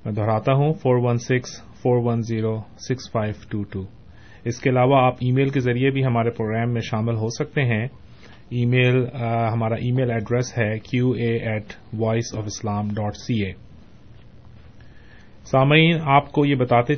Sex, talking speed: male, 130 wpm